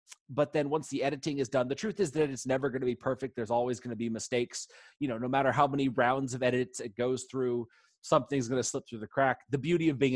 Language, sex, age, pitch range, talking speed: English, male, 30-49, 120-145 Hz, 270 wpm